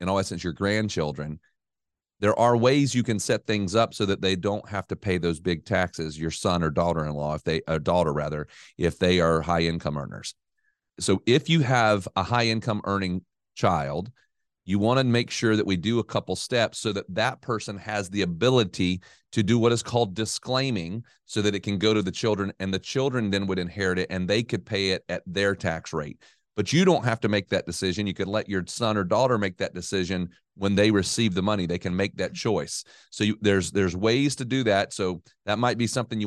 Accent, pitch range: American, 90-115 Hz